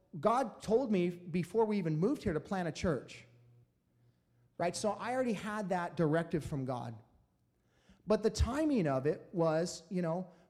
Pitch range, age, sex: 140-200 Hz, 30-49, male